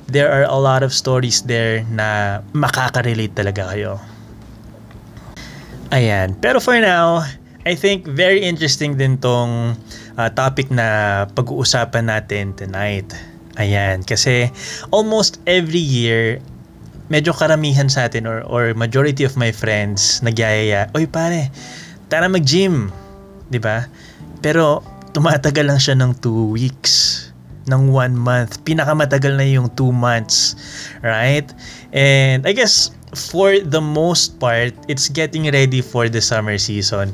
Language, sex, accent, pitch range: Filipino, male, native, 110-150 Hz